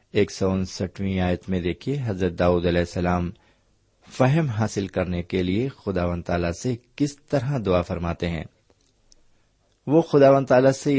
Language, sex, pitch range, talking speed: Urdu, male, 90-120 Hz, 145 wpm